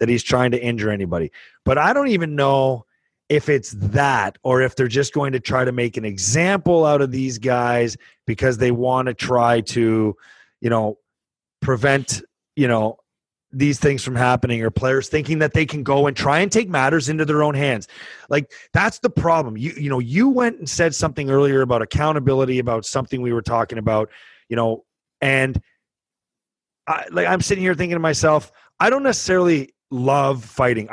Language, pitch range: English, 125-175 Hz